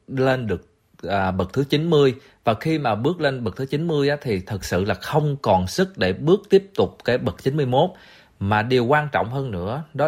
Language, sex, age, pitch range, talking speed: Vietnamese, male, 20-39, 100-140 Hz, 215 wpm